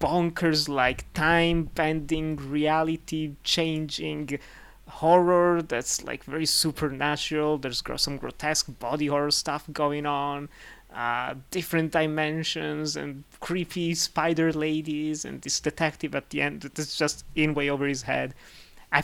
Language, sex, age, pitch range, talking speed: English, male, 20-39, 130-160 Hz, 125 wpm